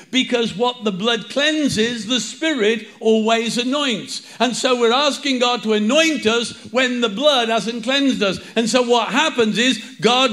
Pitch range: 220-255 Hz